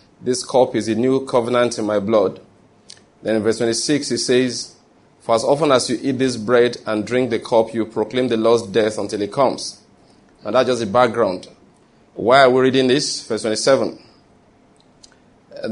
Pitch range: 110-130 Hz